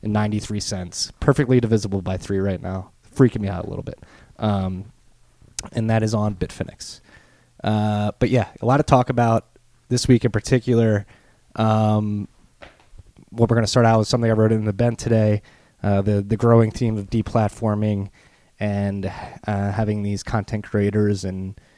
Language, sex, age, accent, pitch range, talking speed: English, male, 20-39, American, 100-110 Hz, 165 wpm